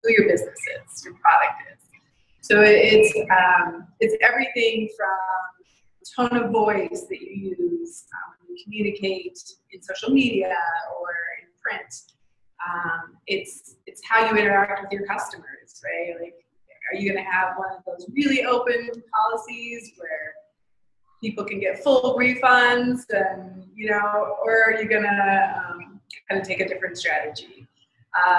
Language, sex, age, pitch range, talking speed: English, female, 20-39, 190-245 Hz, 150 wpm